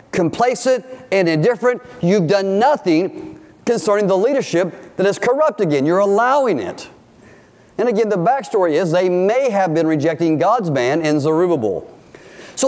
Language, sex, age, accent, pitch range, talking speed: English, male, 50-69, American, 165-215 Hz, 145 wpm